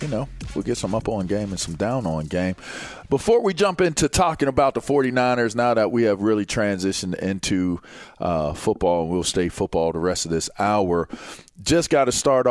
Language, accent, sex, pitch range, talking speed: English, American, male, 90-110 Hz, 205 wpm